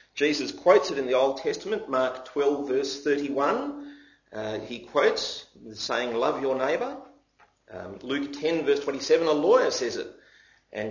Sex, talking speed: male, 155 wpm